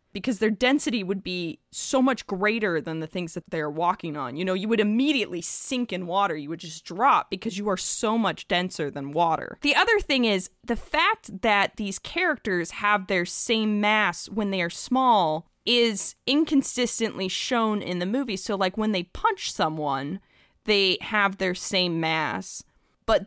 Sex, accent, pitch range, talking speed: female, American, 185-245 Hz, 180 wpm